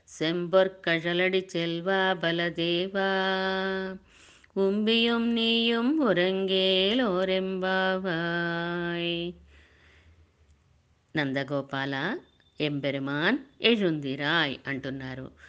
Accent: native